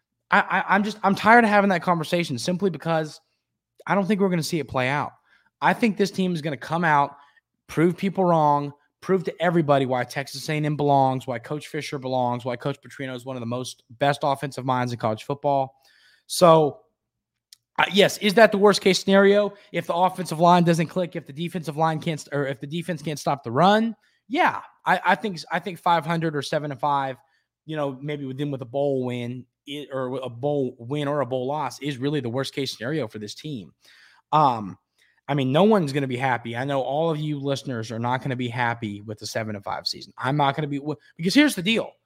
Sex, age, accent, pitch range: male, 20-39, American, 135-185 Hz